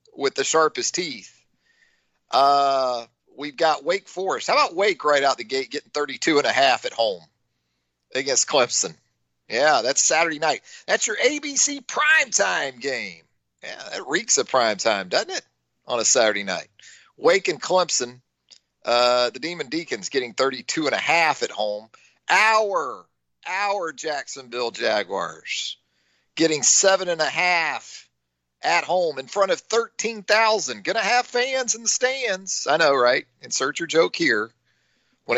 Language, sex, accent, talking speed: English, male, American, 155 wpm